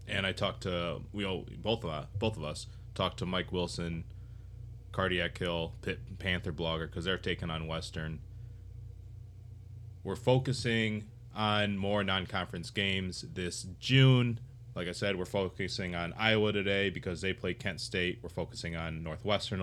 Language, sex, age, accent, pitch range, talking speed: English, male, 20-39, American, 90-115 Hz, 150 wpm